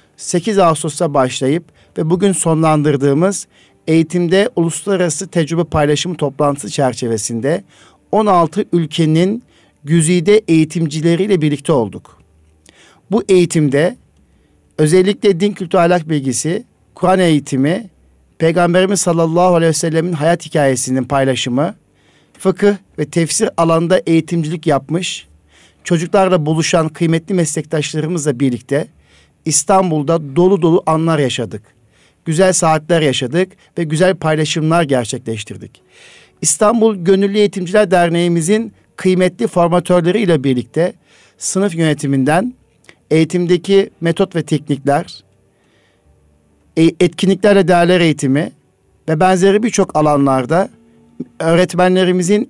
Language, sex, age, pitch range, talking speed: Turkish, male, 50-69, 145-180 Hz, 90 wpm